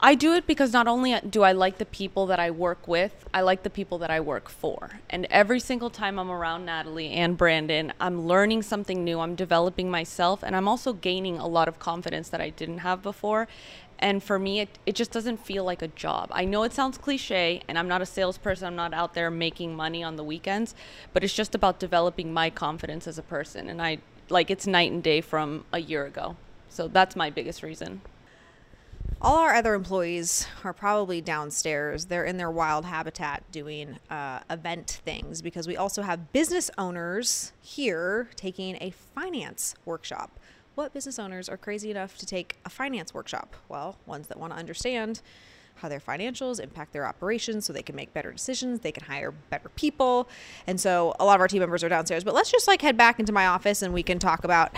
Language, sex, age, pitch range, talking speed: English, female, 20-39, 170-215 Hz, 210 wpm